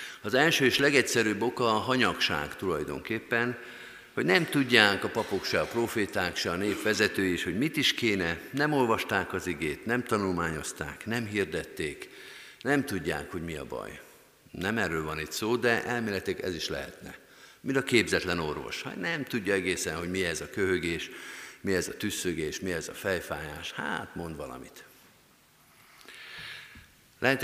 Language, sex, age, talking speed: Hungarian, male, 50-69, 160 wpm